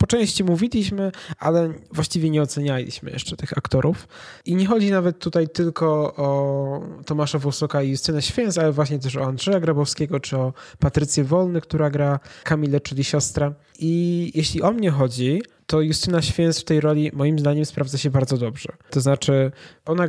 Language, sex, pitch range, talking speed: Polish, male, 135-160 Hz, 170 wpm